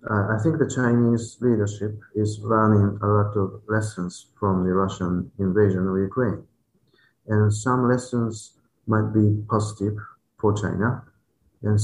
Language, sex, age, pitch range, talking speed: English, male, 50-69, 100-115 Hz, 135 wpm